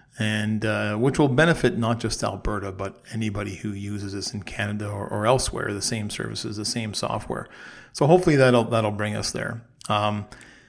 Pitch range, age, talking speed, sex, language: 105-130 Hz, 40-59, 180 wpm, male, English